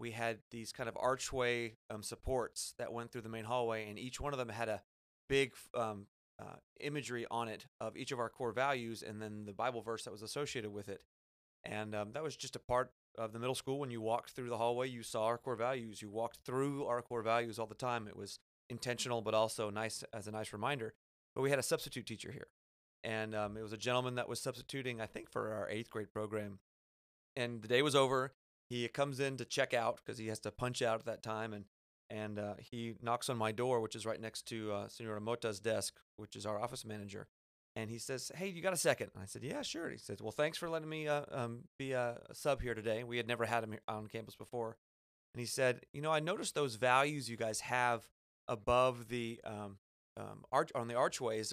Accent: American